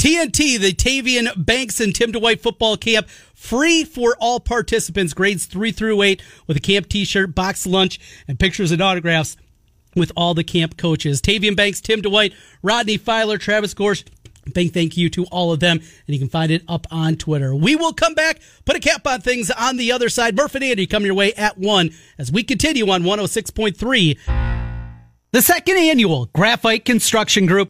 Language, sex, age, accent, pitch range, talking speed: English, male, 40-59, American, 175-245 Hz, 185 wpm